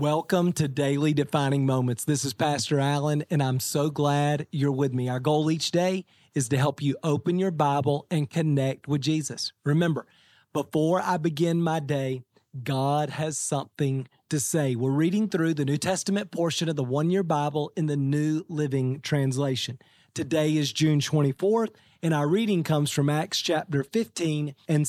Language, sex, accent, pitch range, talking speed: English, male, American, 145-185 Hz, 170 wpm